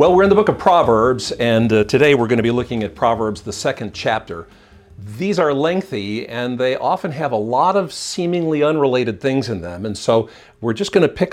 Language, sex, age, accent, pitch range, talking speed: English, male, 50-69, American, 110-160 Hz, 220 wpm